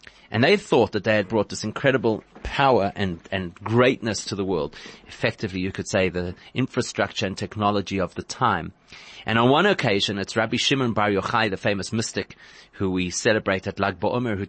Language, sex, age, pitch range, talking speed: English, male, 30-49, 95-115 Hz, 190 wpm